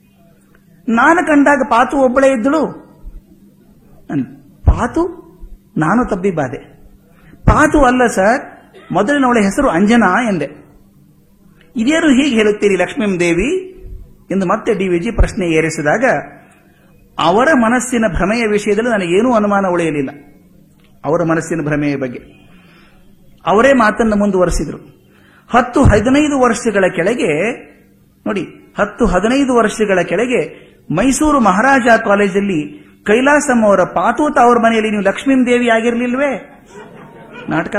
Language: Kannada